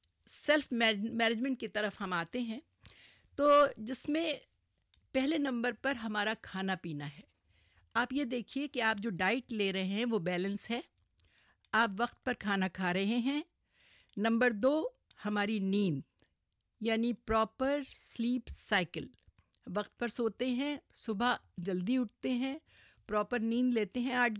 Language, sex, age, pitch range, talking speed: Urdu, female, 50-69, 200-260 Hz, 145 wpm